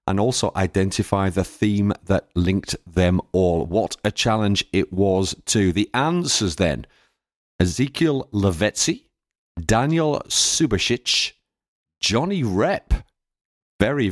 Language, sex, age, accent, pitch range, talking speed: English, male, 40-59, British, 95-135 Hz, 105 wpm